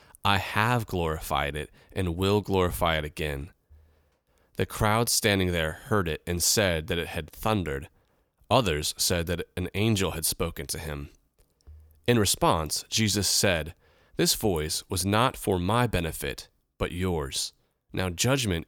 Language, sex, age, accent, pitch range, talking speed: English, male, 30-49, American, 80-105 Hz, 145 wpm